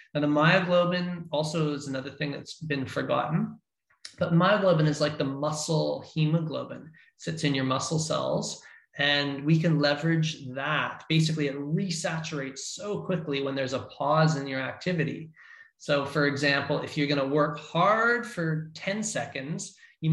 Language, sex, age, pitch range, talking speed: English, male, 20-39, 140-160 Hz, 155 wpm